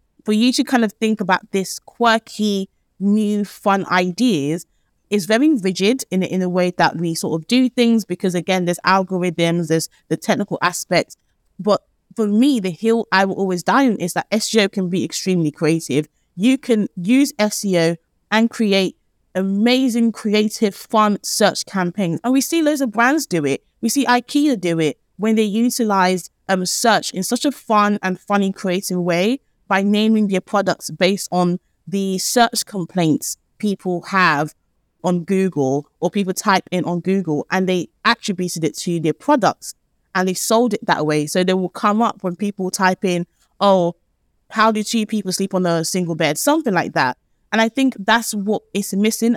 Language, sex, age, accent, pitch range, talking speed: English, female, 20-39, British, 180-220 Hz, 180 wpm